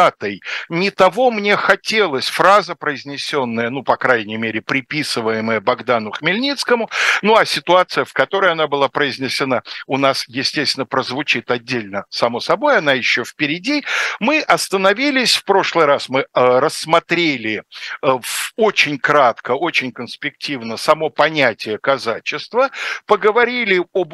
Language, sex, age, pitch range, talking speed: Russian, male, 60-79, 130-195 Hz, 120 wpm